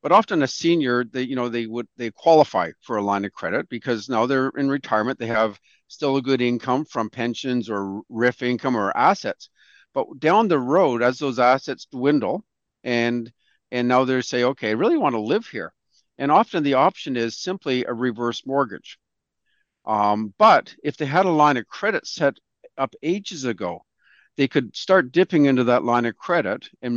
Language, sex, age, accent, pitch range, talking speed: English, male, 50-69, American, 115-145 Hz, 190 wpm